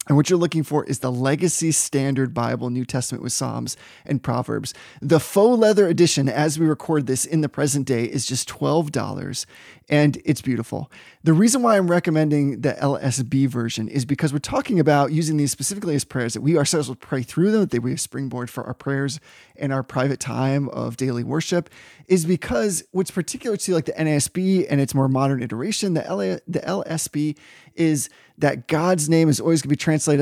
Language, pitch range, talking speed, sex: English, 130-160 Hz, 200 wpm, male